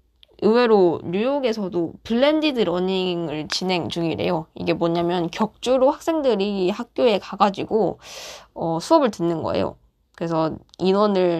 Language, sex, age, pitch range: Korean, female, 20-39, 170-220 Hz